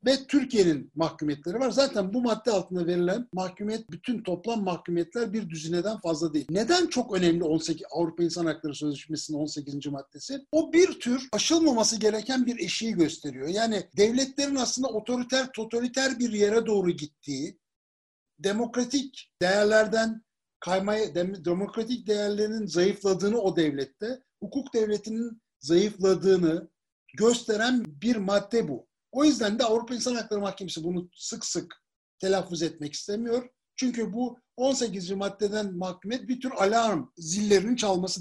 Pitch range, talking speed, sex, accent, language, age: 175-235 Hz, 130 wpm, male, native, Turkish, 60-79